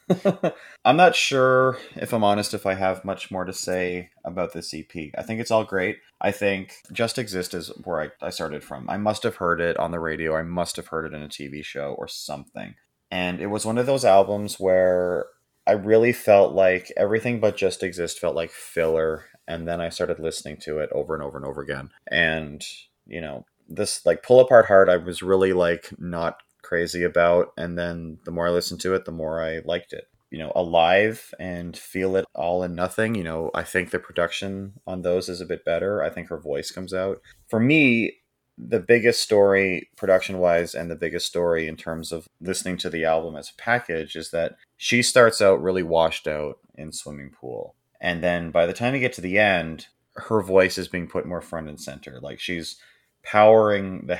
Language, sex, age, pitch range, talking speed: English, male, 30-49, 80-100 Hz, 215 wpm